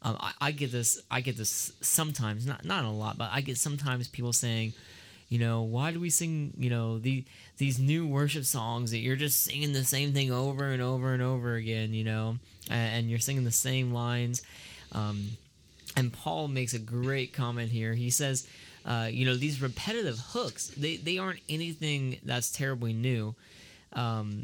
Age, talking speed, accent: 20-39, 190 wpm, American